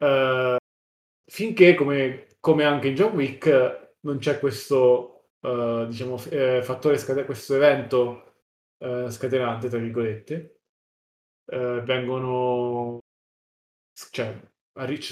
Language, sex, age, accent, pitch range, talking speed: Italian, male, 20-39, native, 120-145 Hz, 105 wpm